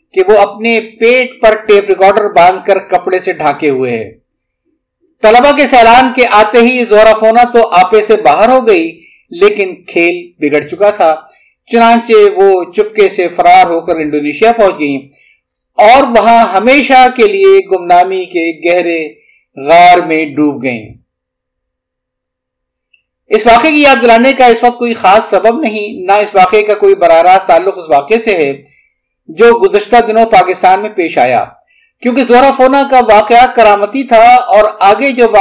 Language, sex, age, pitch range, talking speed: Urdu, male, 50-69, 180-245 Hz, 145 wpm